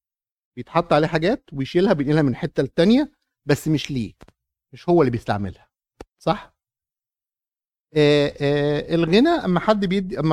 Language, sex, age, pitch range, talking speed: Arabic, male, 50-69, 140-190 Hz, 135 wpm